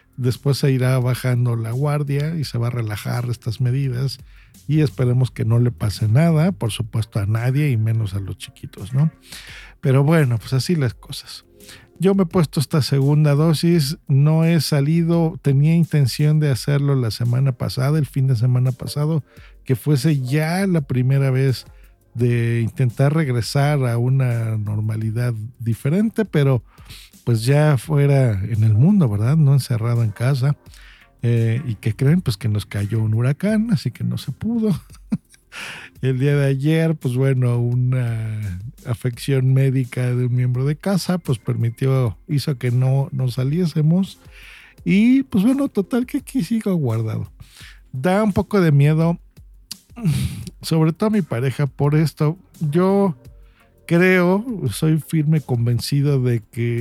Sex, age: male, 50-69